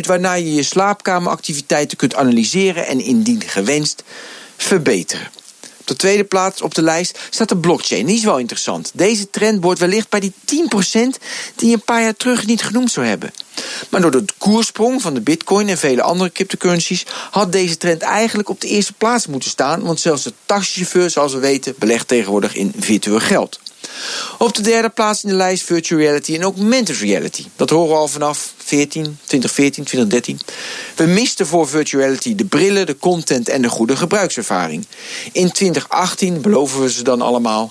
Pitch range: 145-205 Hz